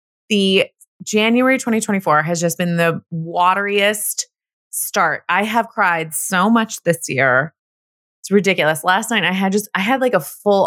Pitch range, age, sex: 150-205 Hz, 20-39, female